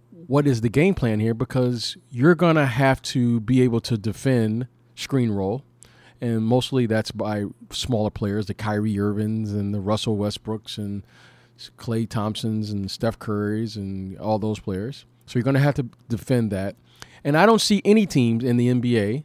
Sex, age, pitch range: male, 40-59, 110-130 Hz